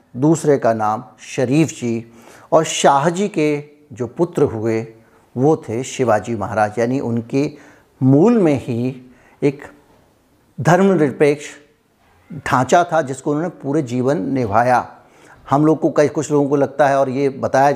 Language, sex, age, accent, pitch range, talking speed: Hindi, male, 50-69, native, 125-165 Hz, 140 wpm